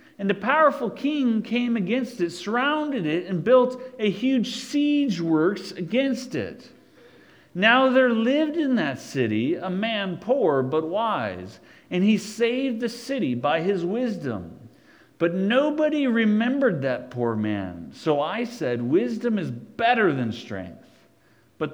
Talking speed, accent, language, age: 140 wpm, American, English, 50-69